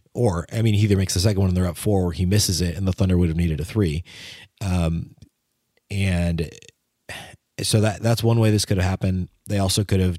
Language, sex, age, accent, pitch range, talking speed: English, male, 30-49, American, 90-105 Hz, 235 wpm